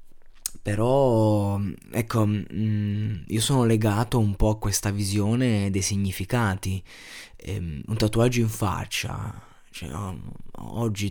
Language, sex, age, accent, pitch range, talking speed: Italian, male, 20-39, native, 100-120 Hz, 95 wpm